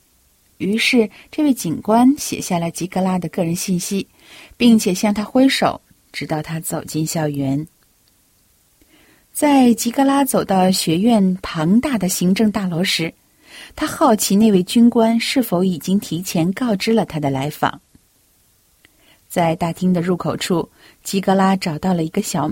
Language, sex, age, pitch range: Chinese, female, 50-69, 160-225 Hz